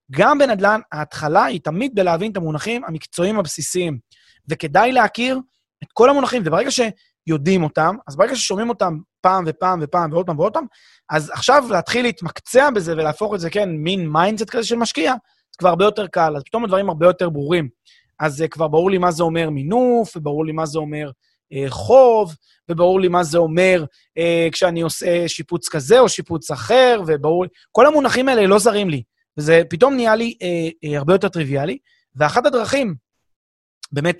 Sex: male